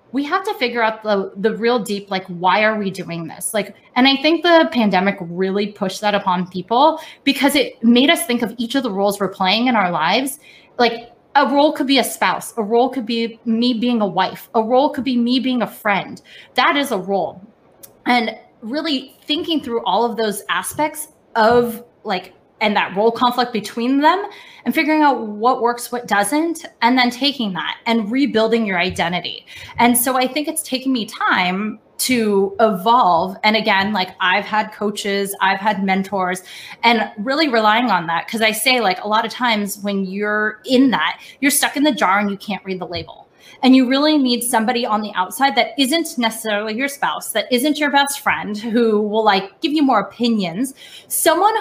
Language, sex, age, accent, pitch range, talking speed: English, female, 20-39, American, 210-275 Hz, 200 wpm